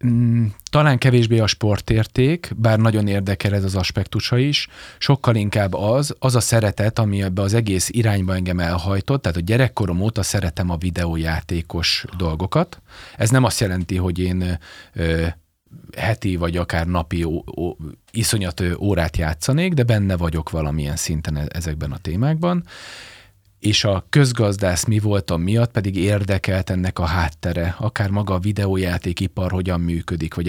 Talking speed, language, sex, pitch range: 140 wpm, Hungarian, male, 85-115 Hz